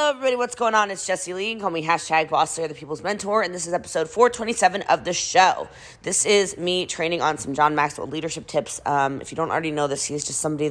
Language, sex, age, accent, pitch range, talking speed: English, female, 20-39, American, 140-180 Hz, 245 wpm